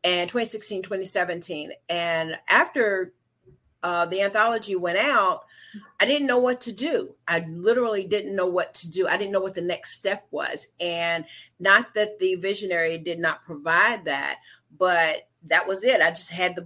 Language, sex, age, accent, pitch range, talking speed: English, female, 40-59, American, 190-285 Hz, 175 wpm